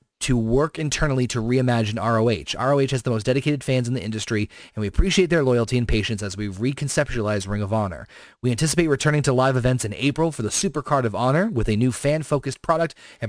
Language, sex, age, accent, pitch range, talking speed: English, male, 30-49, American, 110-140 Hz, 210 wpm